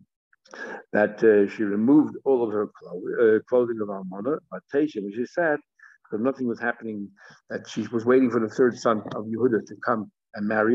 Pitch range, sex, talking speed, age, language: 120-145 Hz, male, 195 wpm, 60-79, English